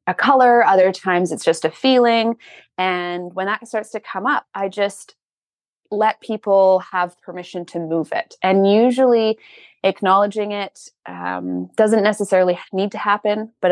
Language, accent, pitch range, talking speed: English, American, 170-200 Hz, 155 wpm